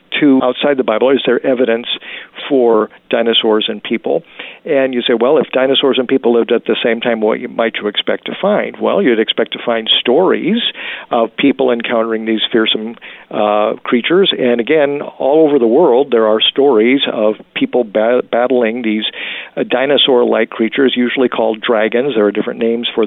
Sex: male